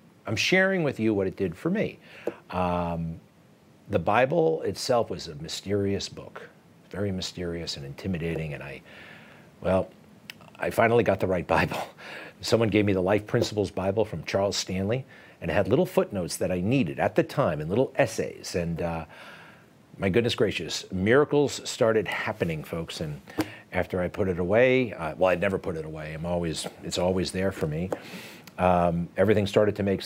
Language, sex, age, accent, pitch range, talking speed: English, male, 50-69, American, 90-120 Hz, 175 wpm